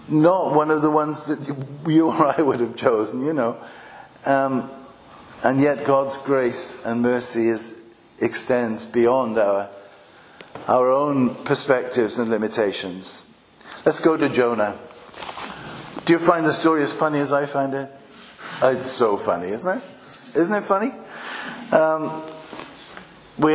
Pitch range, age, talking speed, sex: 125-160 Hz, 50-69, 140 wpm, male